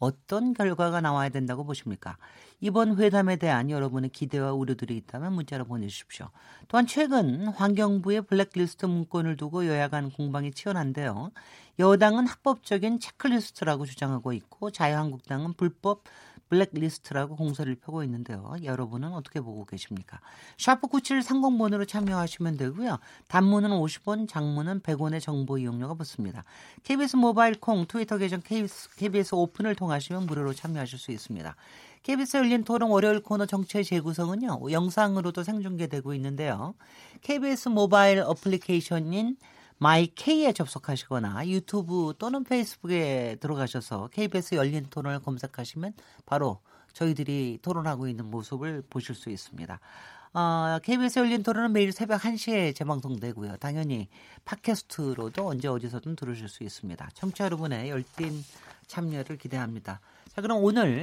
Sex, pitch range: male, 135-205 Hz